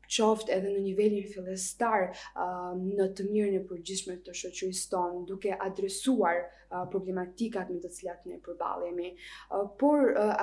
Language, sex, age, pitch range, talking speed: English, female, 20-39, 180-210 Hz, 150 wpm